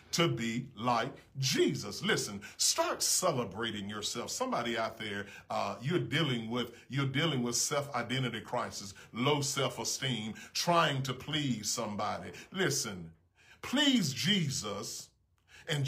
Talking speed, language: 115 wpm, English